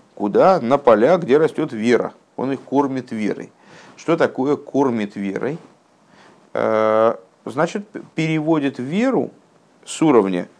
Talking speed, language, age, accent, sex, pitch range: 110 wpm, Russian, 50-69, native, male, 110-185 Hz